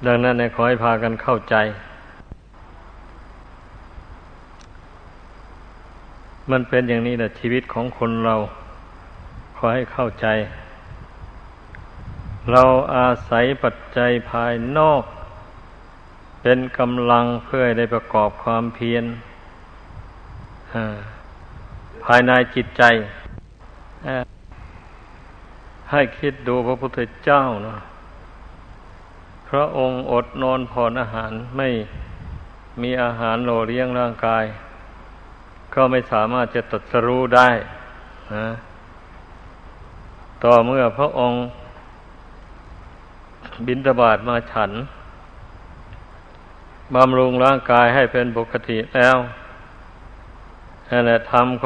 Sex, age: male, 60-79